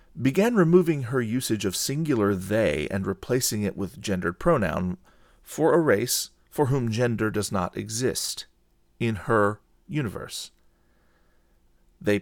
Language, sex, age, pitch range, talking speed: English, male, 40-59, 95-120 Hz, 130 wpm